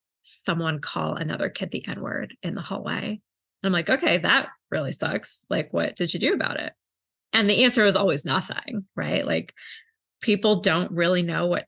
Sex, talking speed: female, 190 wpm